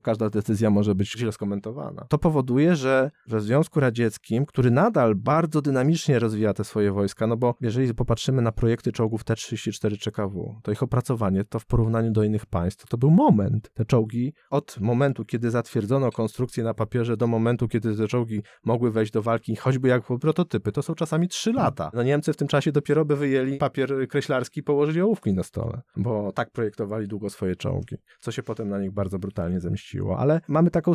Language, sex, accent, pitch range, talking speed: Polish, male, native, 110-140 Hz, 190 wpm